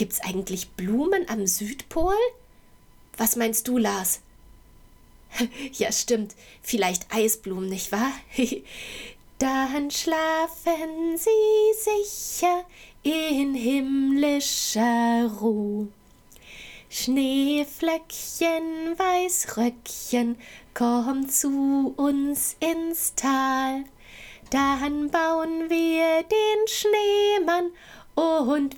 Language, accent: German, German